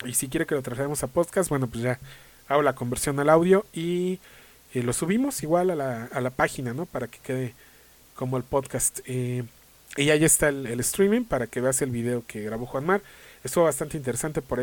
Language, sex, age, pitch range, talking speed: English, male, 40-59, 125-160 Hz, 220 wpm